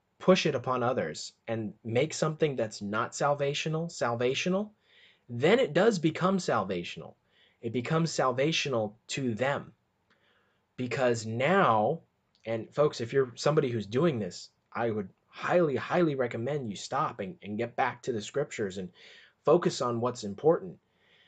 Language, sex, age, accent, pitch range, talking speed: English, male, 30-49, American, 115-150 Hz, 140 wpm